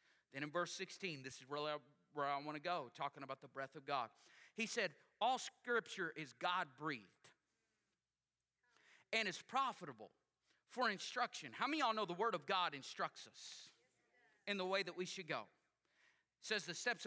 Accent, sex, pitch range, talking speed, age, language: American, male, 175-245 Hz, 180 wpm, 40-59, English